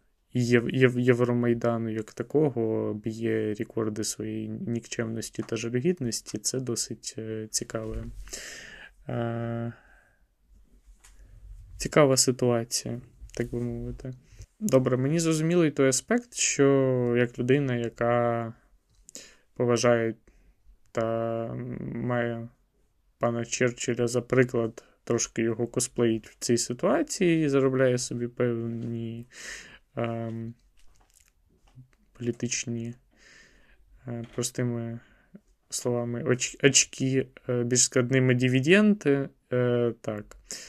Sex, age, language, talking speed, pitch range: male, 20-39, Ukrainian, 80 wpm, 115-130 Hz